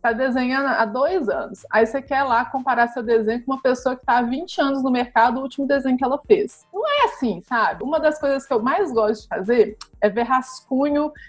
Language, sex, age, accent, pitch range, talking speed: Portuguese, female, 20-39, Brazilian, 215-265 Hz, 235 wpm